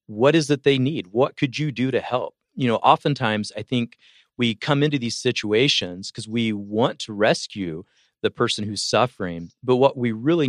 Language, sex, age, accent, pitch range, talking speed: English, male, 40-59, American, 110-135 Hz, 195 wpm